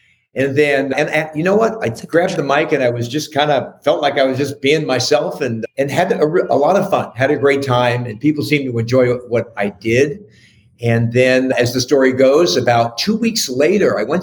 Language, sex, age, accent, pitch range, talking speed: English, male, 50-69, American, 125-175 Hz, 230 wpm